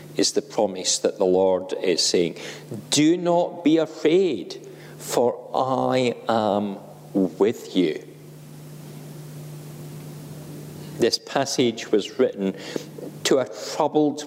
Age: 50-69